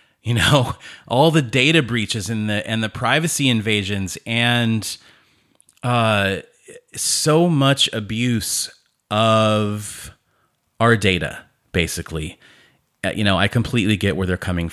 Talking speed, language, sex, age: 120 wpm, English, male, 30-49